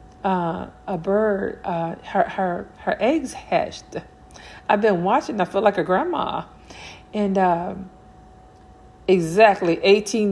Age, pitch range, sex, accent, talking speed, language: 40-59, 180-215 Hz, female, American, 120 wpm, English